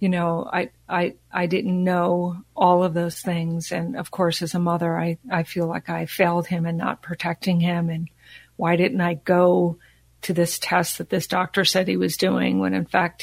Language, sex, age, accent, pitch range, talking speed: English, female, 50-69, American, 170-185 Hz, 210 wpm